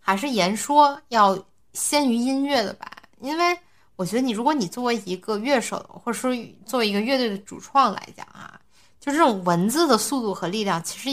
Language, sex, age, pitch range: Chinese, female, 20-39, 185-260 Hz